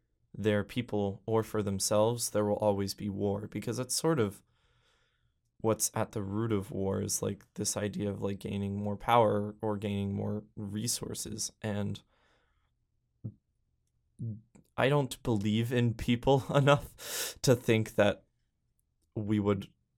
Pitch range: 100-120 Hz